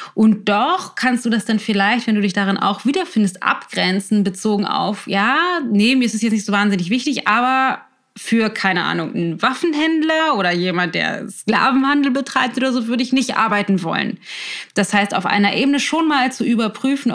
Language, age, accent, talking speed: German, 20-39, German, 185 wpm